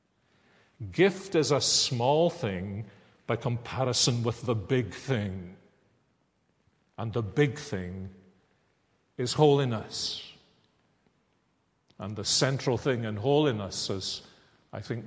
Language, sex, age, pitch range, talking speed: English, male, 50-69, 110-140 Hz, 105 wpm